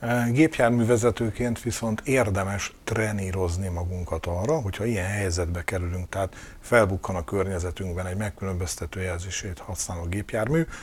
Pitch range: 95-120 Hz